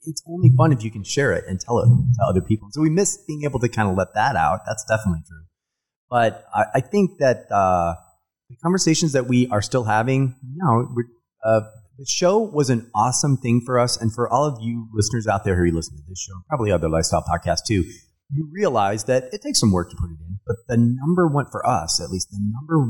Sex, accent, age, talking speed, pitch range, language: male, American, 30-49, 245 wpm, 95-140 Hz, English